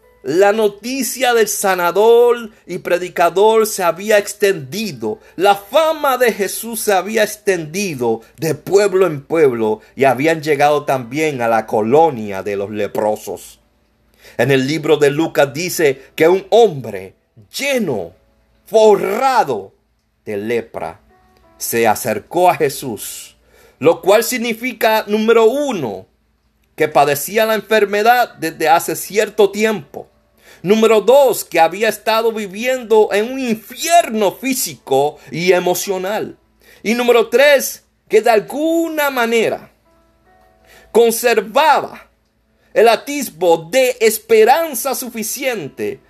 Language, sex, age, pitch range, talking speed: Spanish, male, 50-69, 155-235 Hz, 110 wpm